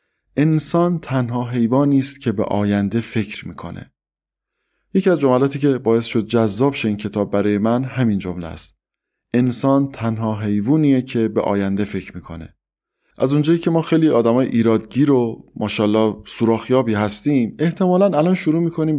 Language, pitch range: English, 105-145 Hz